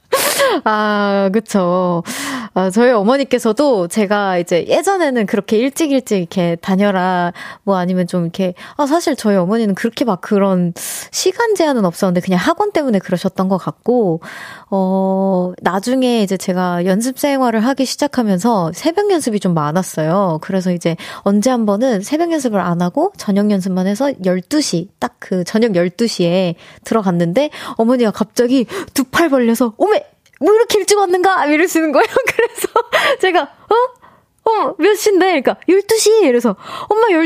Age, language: 20-39, Korean